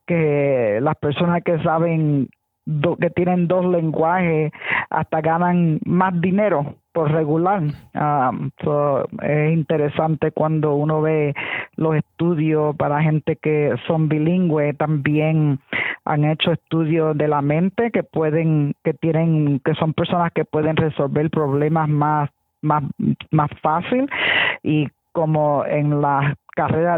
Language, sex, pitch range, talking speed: English, female, 145-165 Hz, 125 wpm